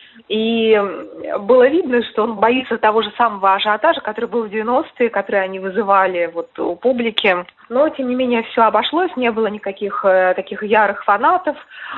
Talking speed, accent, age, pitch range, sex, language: 155 wpm, native, 20-39, 195-240 Hz, female, Russian